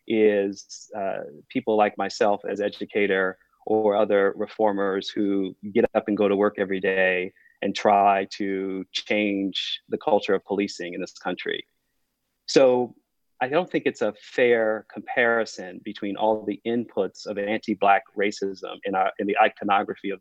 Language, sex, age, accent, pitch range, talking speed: English, male, 30-49, American, 100-110 Hz, 150 wpm